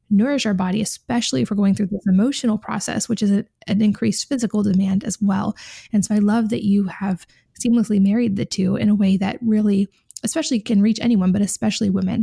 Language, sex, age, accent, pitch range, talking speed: English, female, 20-39, American, 195-220 Hz, 205 wpm